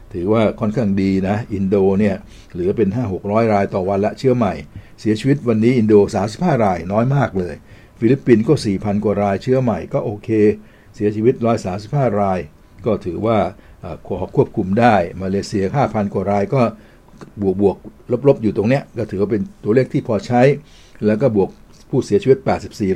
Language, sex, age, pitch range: Thai, male, 60-79, 95-110 Hz